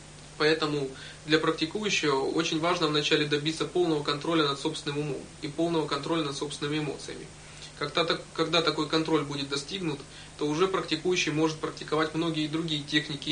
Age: 20-39